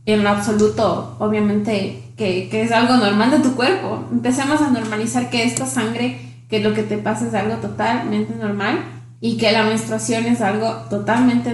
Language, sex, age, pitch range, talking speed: Spanish, female, 20-39, 205-245 Hz, 175 wpm